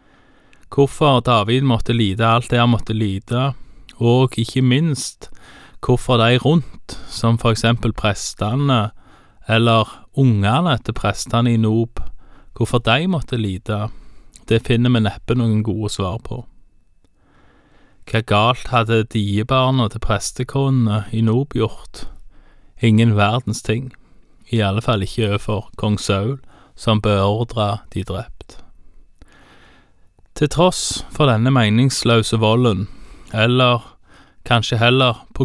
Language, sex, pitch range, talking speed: Danish, male, 110-125 Hz, 120 wpm